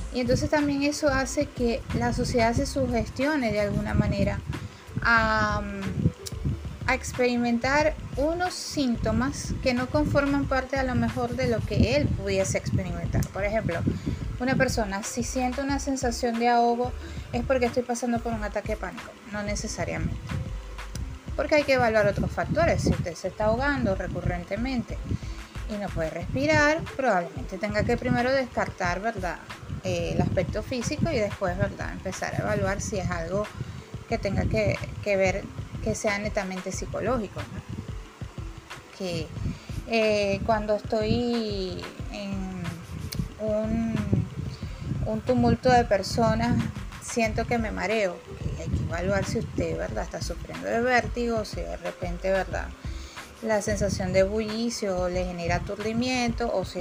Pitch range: 185-250 Hz